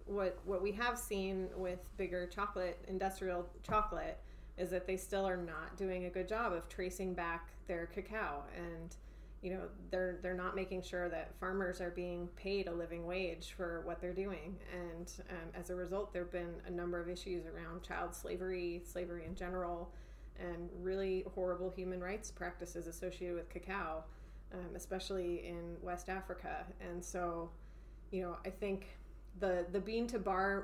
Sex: female